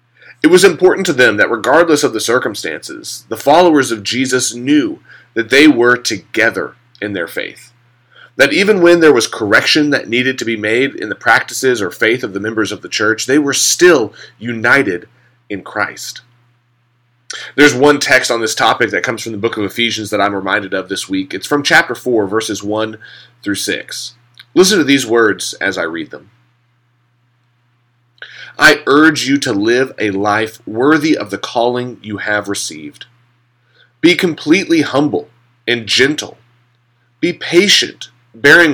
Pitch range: 120-145 Hz